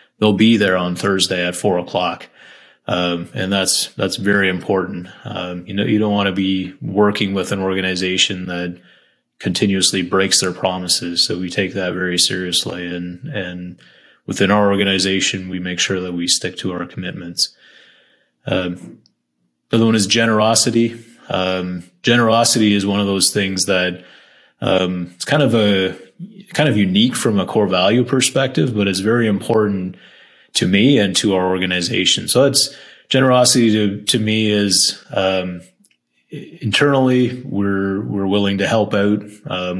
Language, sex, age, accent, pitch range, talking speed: English, male, 30-49, American, 95-105 Hz, 155 wpm